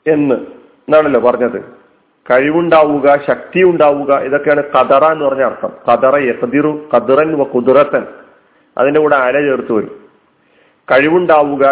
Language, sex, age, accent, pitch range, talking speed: Malayalam, male, 40-59, native, 130-175 Hz, 100 wpm